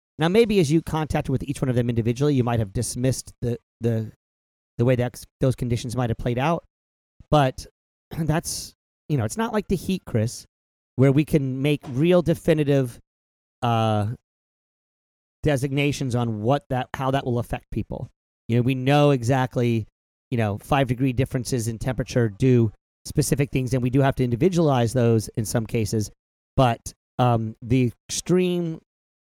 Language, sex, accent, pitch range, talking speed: English, male, American, 115-145 Hz, 165 wpm